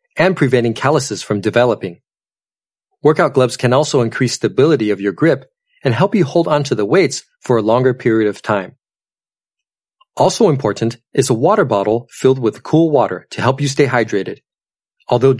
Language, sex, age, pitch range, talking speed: English, male, 30-49, 115-170 Hz, 170 wpm